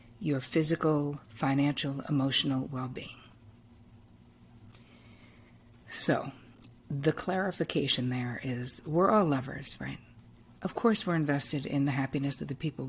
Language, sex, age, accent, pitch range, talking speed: English, female, 50-69, American, 125-160 Hz, 110 wpm